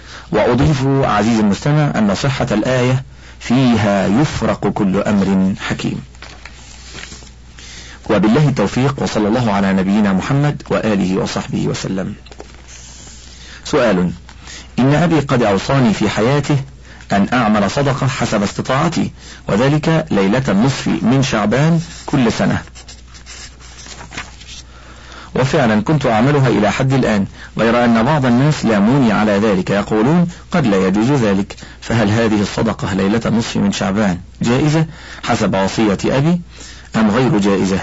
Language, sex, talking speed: Arabic, male, 115 wpm